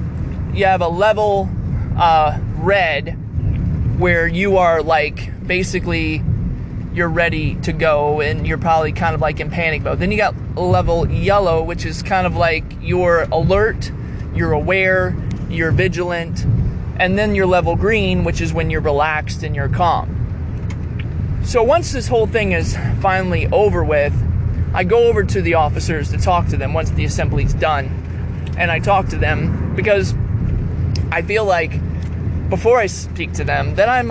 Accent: American